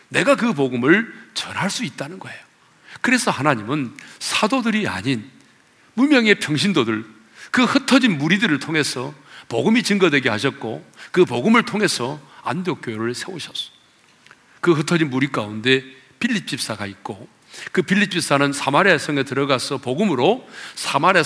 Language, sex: Korean, male